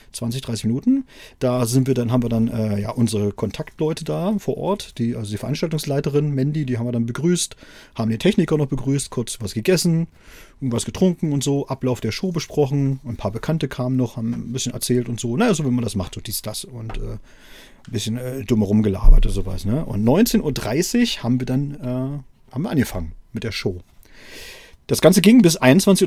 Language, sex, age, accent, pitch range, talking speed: German, male, 40-59, German, 115-145 Hz, 210 wpm